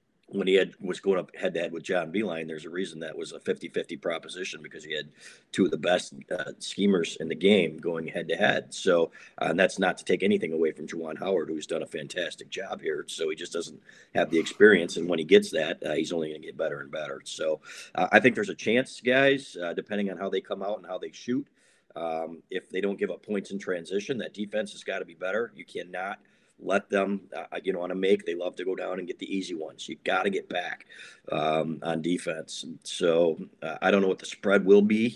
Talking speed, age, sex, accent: 245 wpm, 40-59, male, American